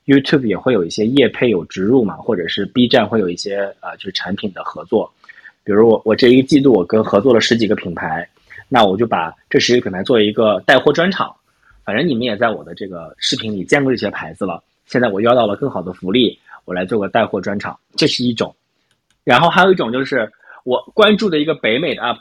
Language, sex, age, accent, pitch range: Chinese, male, 20-39, native, 110-150 Hz